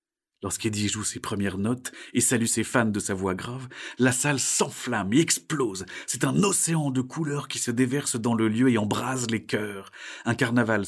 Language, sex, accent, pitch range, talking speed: French, male, French, 100-120 Hz, 195 wpm